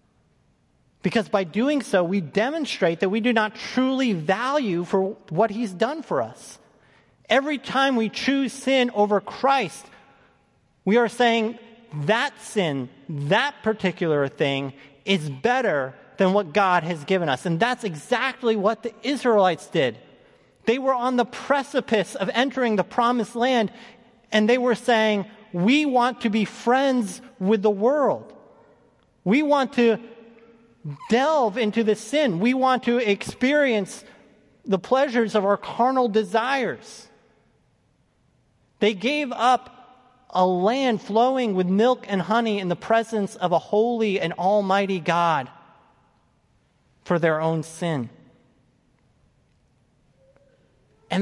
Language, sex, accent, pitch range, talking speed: English, male, American, 190-245 Hz, 130 wpm